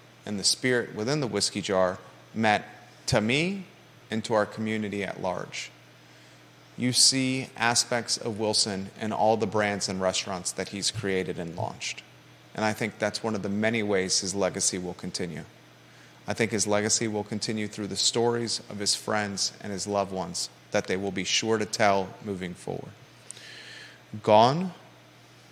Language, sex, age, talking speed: English, male, 30-49, 165 wpm